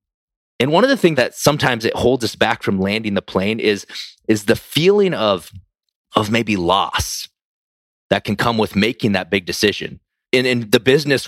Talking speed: 185 wpm